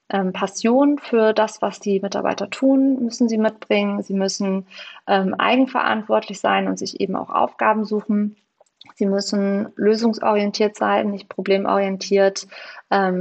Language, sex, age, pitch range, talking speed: German, female, 30-49, 195-215 Hz, 125 wpm